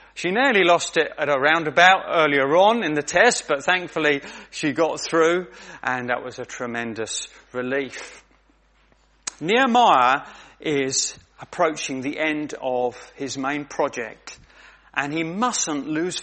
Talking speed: 135 wpm